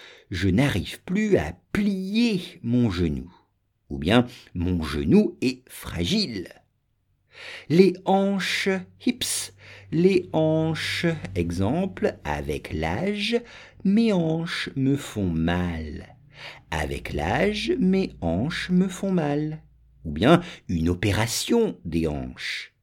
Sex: male